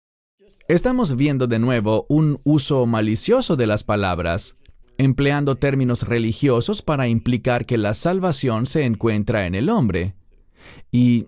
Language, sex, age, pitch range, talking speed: English, male, 40-59, 105-145 Hz, 130 wpm